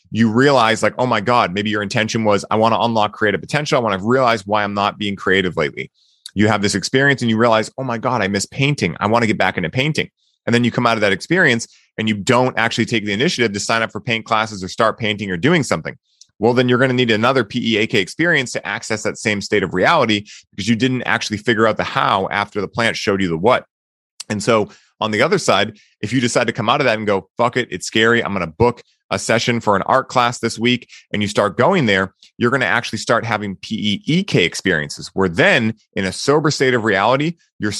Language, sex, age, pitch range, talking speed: English, male, 30-49, 105-125 Hz, 250 wpm